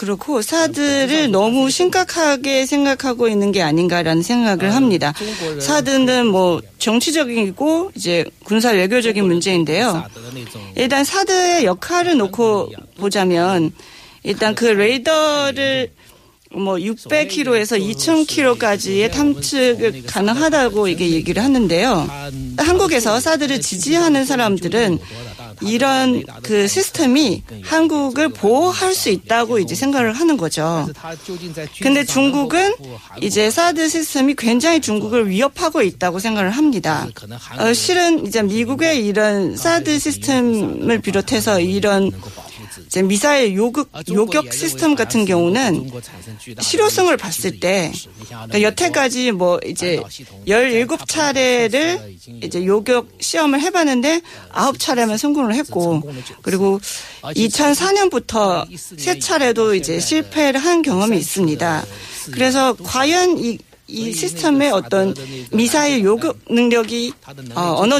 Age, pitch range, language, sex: 40-59, 185-290 Hz, Korean, female